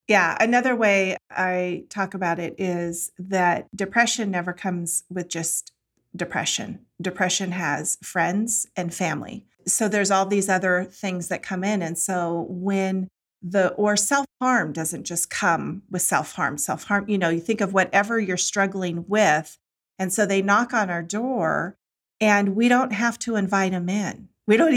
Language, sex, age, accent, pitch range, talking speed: English, female, 40-59, American, 180-220 Hz, 160 wpm